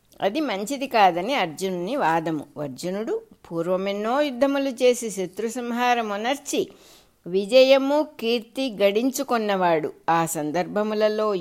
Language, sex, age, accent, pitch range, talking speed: English, female, 60-79, Indian, 180-255 Hz, 100 wpm